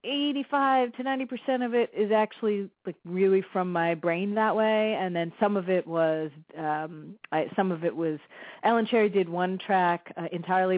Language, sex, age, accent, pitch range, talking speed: English, female, 40-59, American, 170-215 Hz, 185 wpm